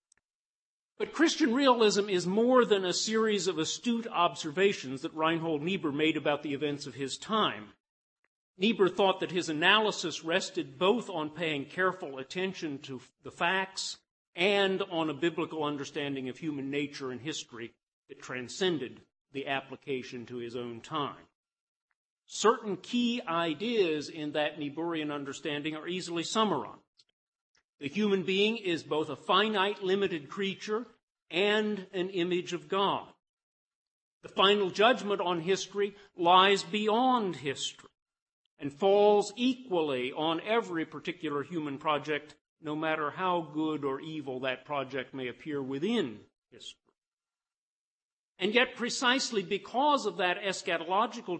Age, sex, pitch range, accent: 50-69, male, 150-205 Hz, American